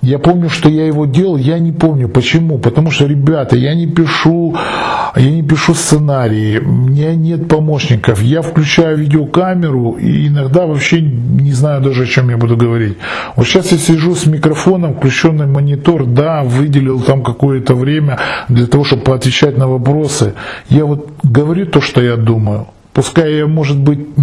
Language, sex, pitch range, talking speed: Russian, male, 125-160 Hz, 170 wpm